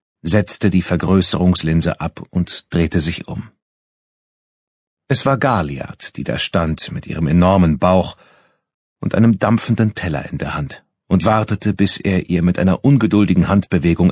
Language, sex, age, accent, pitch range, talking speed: German, male, 40-59, German, 85-115 Hz, 145 wpm